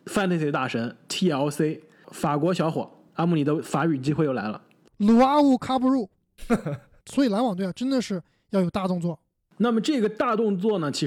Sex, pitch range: male, 145-195 Hz